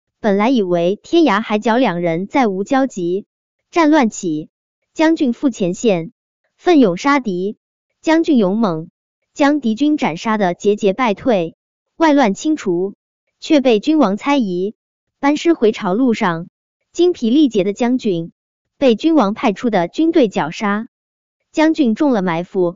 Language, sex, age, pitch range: Chinese, male, 20-39, 195-280 Hz